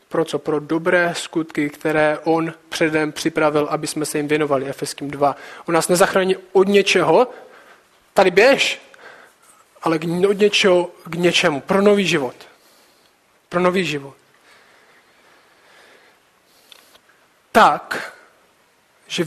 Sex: male